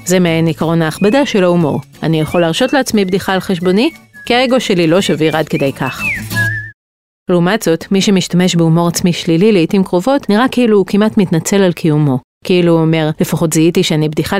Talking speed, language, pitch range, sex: 185 wpm, Hebrew, 160-200 Hz, female